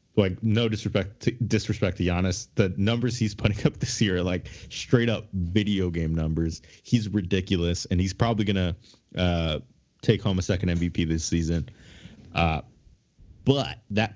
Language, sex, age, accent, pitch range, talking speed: English, male, 20-39, American, 90-120 Hz, 160 wpm